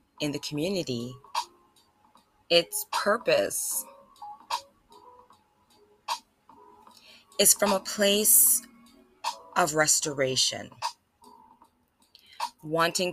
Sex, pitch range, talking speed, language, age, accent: female, 145-230 Hz, 55 wpm, English, 20-39, American